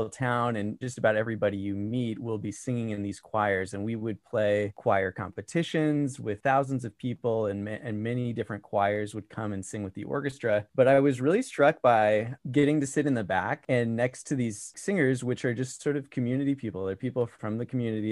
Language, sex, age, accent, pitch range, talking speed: English, male, 20-39, American, 105-130 Hz, 210 wpm